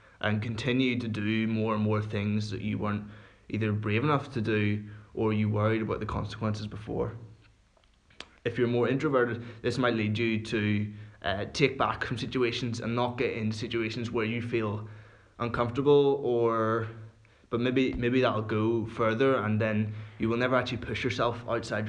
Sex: male